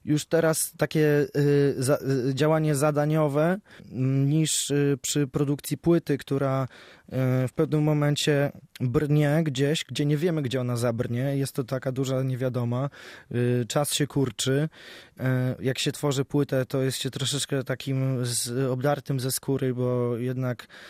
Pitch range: 125-140 Hz